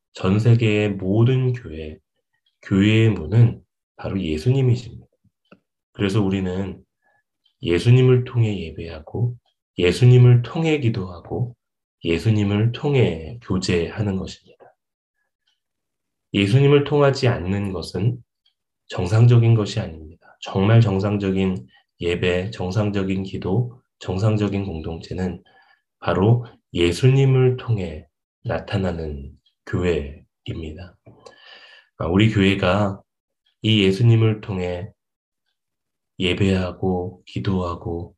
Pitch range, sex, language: 90-115 Hz, male, Korean